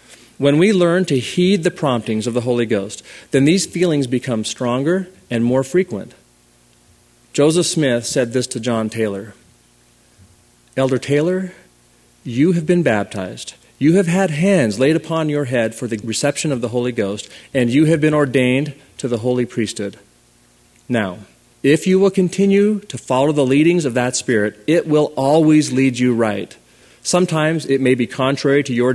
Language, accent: English, American